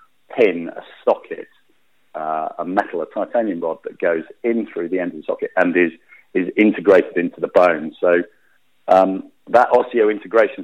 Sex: male